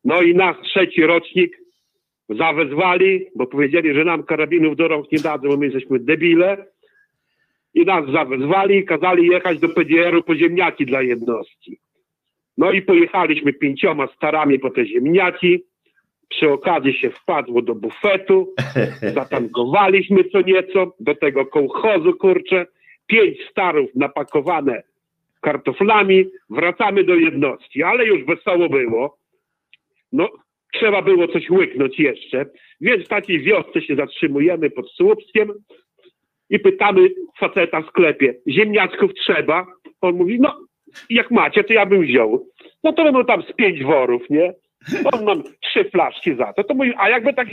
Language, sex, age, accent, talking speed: Polish, male, 50-69, native, 140 wpm